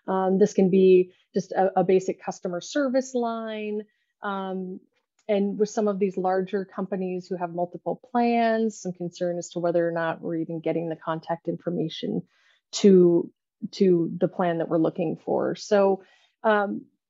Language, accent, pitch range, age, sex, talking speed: English, American, 180-215 Hz, 30-49, female, 160 wpm